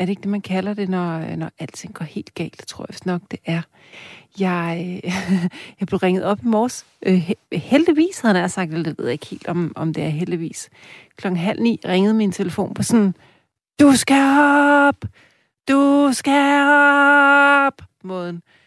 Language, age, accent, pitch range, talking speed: Danish, 40-59, native, 170-210 Hz, 185 wpm